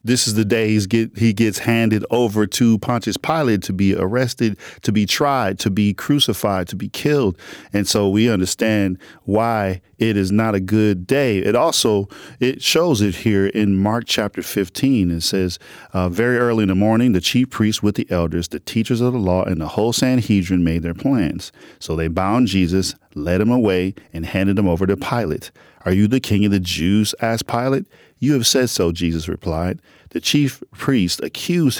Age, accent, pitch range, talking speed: 40-59, American, 90-115 Hz, 190 wpm